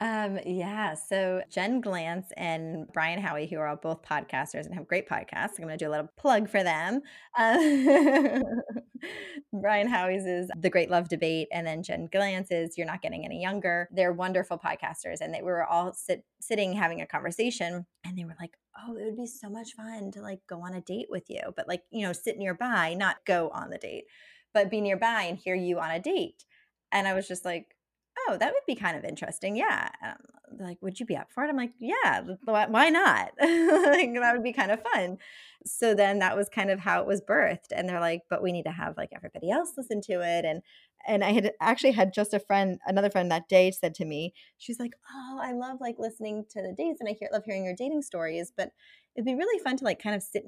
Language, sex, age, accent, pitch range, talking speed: English, female, 20-39, American, 180-240 Hz, 235 wpm